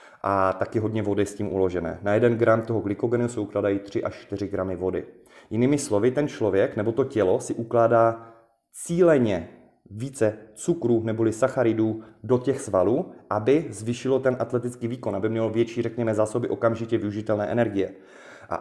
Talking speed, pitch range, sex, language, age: 160 wpm, 100-120 Hz, male, Czech, 30-49